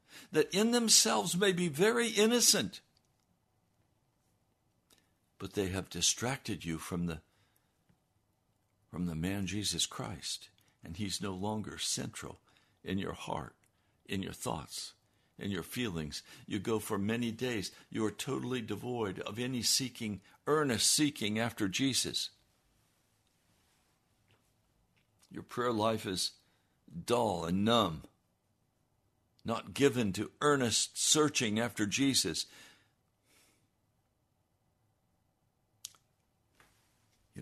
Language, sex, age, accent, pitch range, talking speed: English, male, 60-79, American, 95-125 Hz, 100 wpm